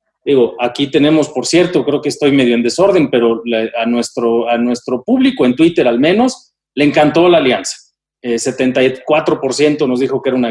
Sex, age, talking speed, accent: male, 40-59, 190 wpm, Mexican